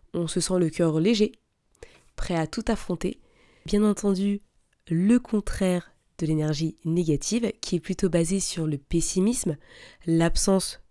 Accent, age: French, 20-39